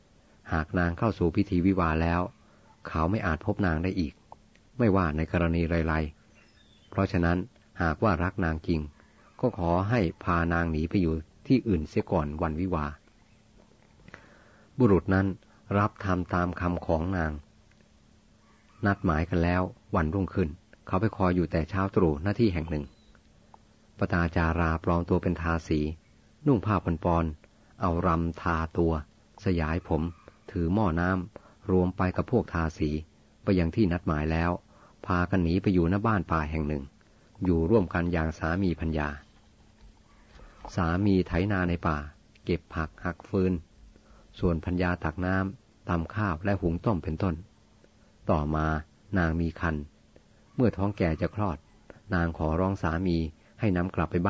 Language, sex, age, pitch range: Thai, male, 30-49, 80-100 Hz